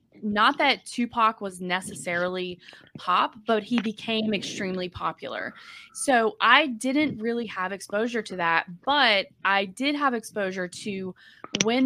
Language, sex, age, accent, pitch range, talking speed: English, female, 20-39, American, 175-225 Hz, 130 wpm